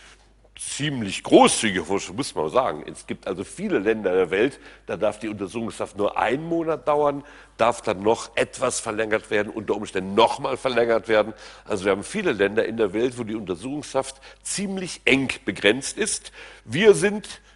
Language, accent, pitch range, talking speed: German, German, 105-150 Hz, 165 wpm